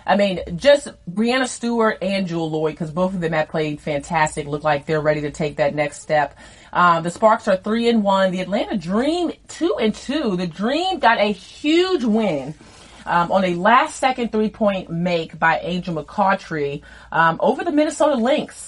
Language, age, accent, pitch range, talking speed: English, 30-49, American, 165-210 Hz, 190 wpm